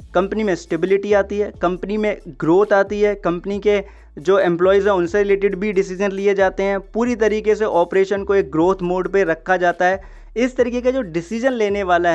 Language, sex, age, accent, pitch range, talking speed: Hindi, male, 20-39, native, 175-200 Hz, 200 wpm